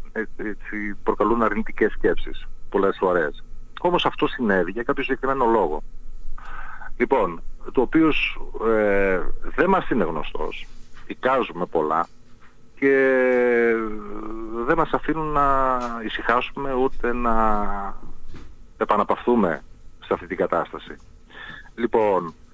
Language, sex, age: Greek, male, 40-59